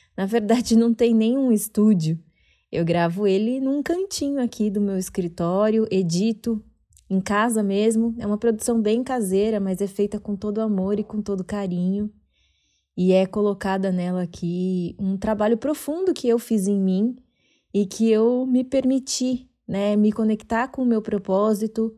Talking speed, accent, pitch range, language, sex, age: 160 wpm, Brazilian, 190-230 Hz, Portuguese, female, 20-39